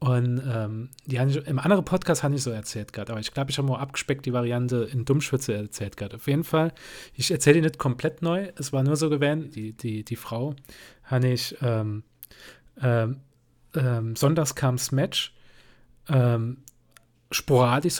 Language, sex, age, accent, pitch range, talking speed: German, male, 40-59, German, 125-150 Hz, 175 wpm